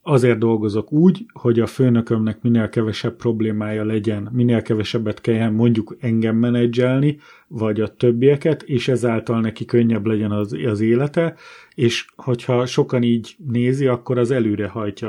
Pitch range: 115-140 Hz